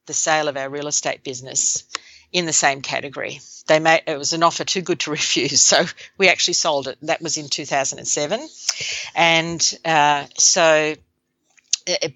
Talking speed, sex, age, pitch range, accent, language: 170 wpm, female, 50-69, 145-170 Hz, Australian, English